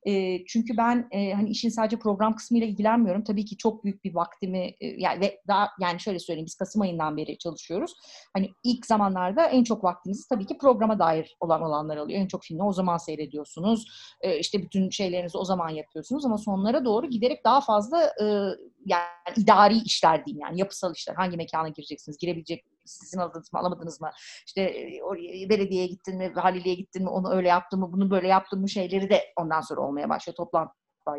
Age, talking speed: 30-49, 185 wpm